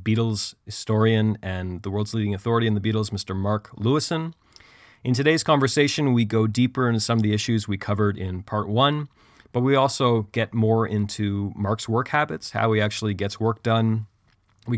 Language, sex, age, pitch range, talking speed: English, male, 30-49, 105-120 Hz, 185 wpm